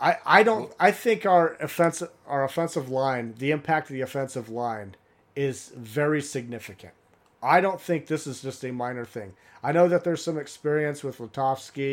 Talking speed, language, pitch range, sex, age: 175 wpm, English, 125-160 Hz, male, 40-59